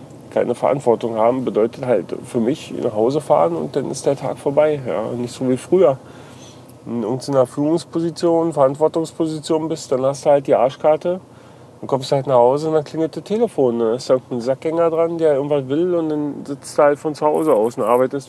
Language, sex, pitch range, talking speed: German, male, 125-155 Hz, 215 wpm